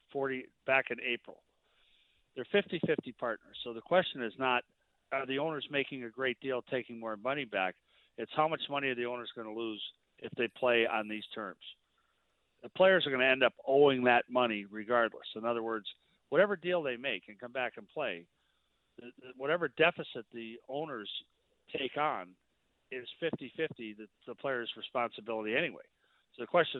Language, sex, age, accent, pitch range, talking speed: English, male, 50-69, American, 115-140 Hz, 180 wpm